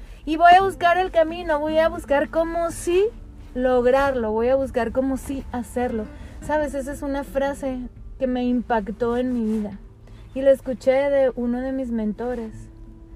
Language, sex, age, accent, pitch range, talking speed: Spanish, female, 20-39, Mexican, 230-300 Hz, 170 wpm